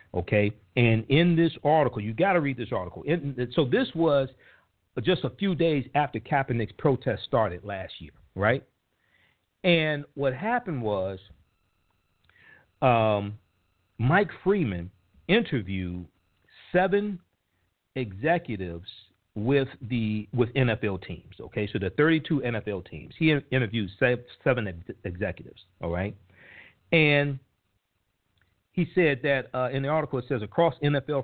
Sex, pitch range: male, 100-145 Hz